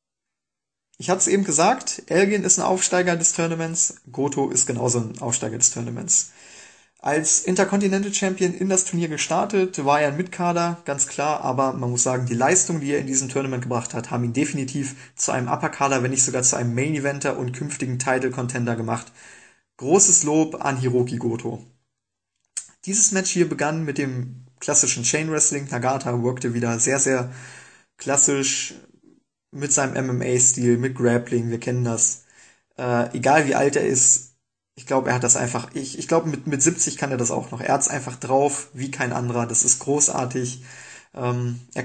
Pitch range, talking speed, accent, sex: 125-155 Hz, 175 wpm, German, male